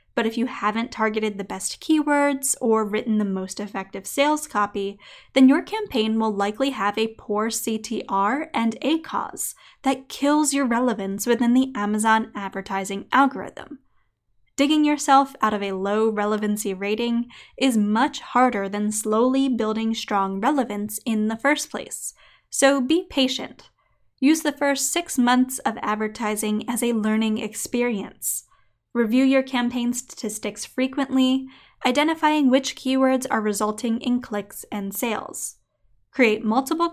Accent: American